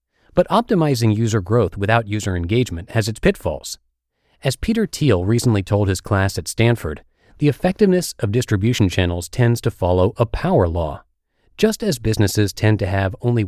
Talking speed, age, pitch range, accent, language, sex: 165 wpm, 40-59, 95-130 Hz, American, English, male